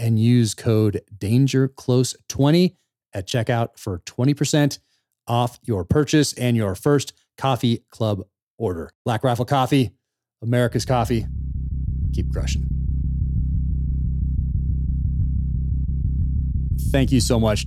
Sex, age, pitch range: male, 30-49, 85-115 Hz